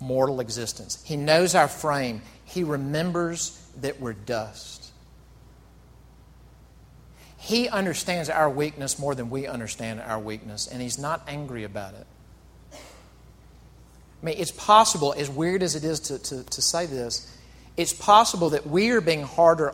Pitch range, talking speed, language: 120-185 Hz, 145 wpm, English